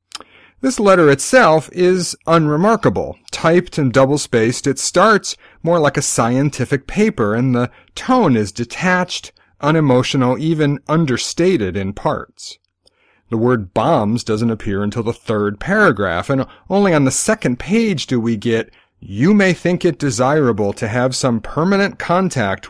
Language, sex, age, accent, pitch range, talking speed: English, male, 40-59, American, 110-170 Hz, 140 wpm